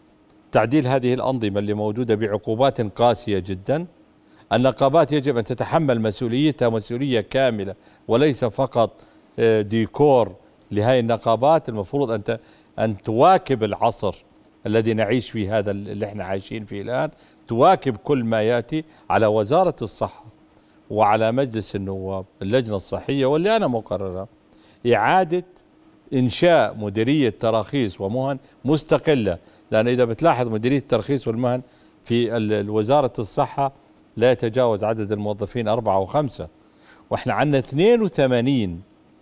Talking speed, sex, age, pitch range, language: 115 wpm, male, 50-69, 110-140 Hz, Arabic